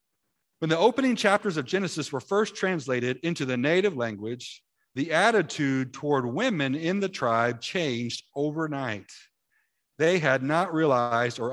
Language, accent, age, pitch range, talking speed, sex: English, American, 50-69, 120-160 Hz, 140 wpm, male